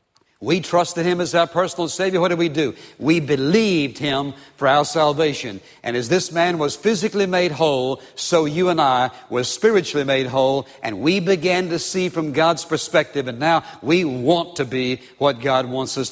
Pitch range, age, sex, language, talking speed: 140-180 Hz, 60-79, male, English, 190 wpm